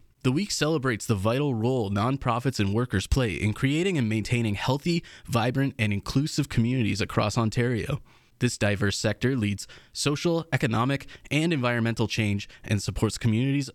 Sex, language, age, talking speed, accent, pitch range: male, English, 20-39, 145 wpm, American, 105-135 Hz